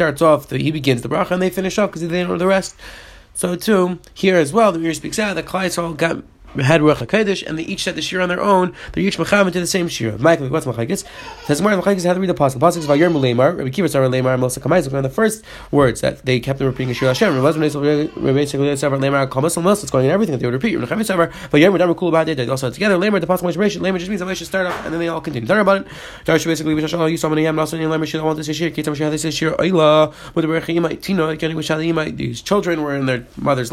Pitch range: 150-195 Hz